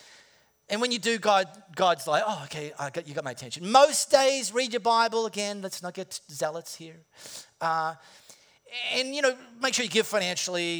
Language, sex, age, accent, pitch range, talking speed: English, male, 40-59, Australian, 190-250 Hz, 195 wpm